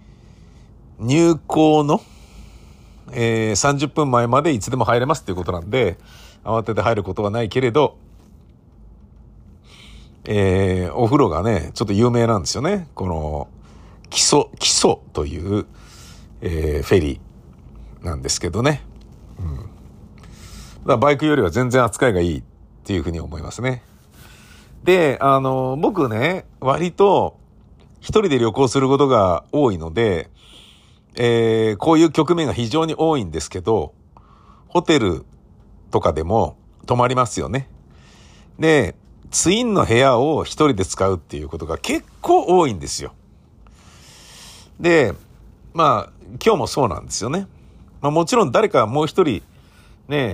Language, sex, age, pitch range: Japanese, male, 50-69, 90-140 Hz